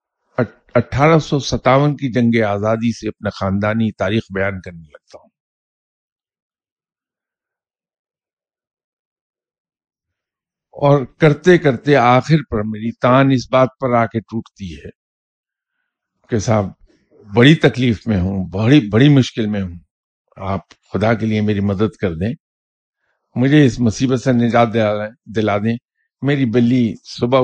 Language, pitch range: English, 100-135 Hz